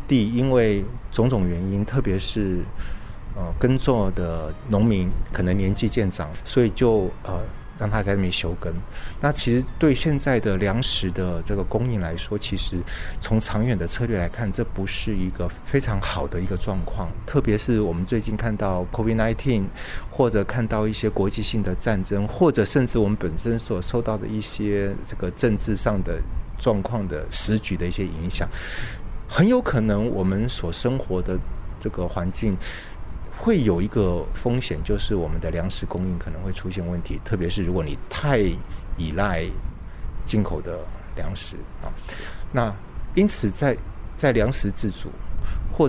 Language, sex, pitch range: Chinese, male, 90-110 Hz